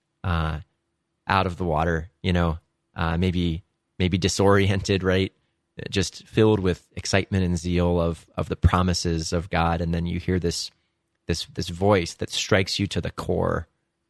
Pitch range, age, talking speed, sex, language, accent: 85-95 Hz, 30-49, 160 wpm, male, English, American